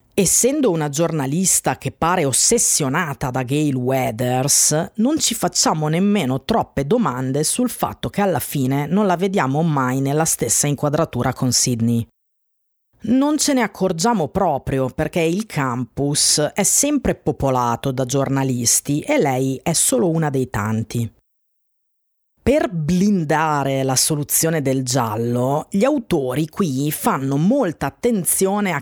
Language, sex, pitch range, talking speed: Italian, female, 130-195 Hz, 130 wpm